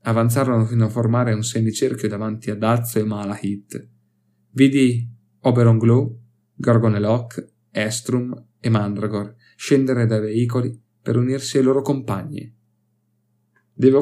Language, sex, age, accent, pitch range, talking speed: Italian, male, 30-49, native, 110-125 Hz, 115 wpm